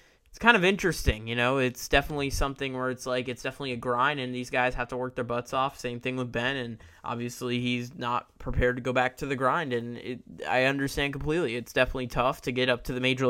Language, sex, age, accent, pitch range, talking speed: English, male, 20-39, American, 120-140 Hz, 240 wpm